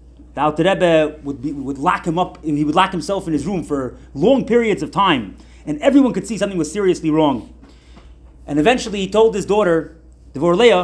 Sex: male